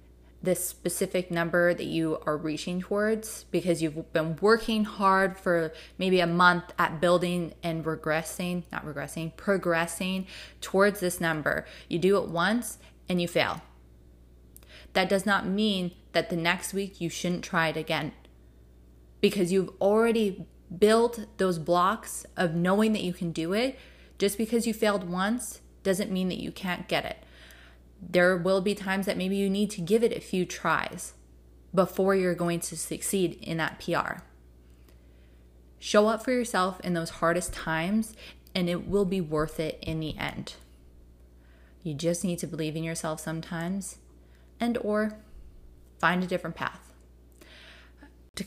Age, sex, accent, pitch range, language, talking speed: 20-39, female, American, 155-195 Hz, English, 155 wpm